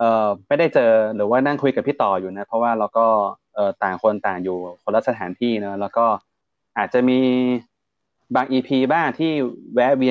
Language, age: Thai, 20-39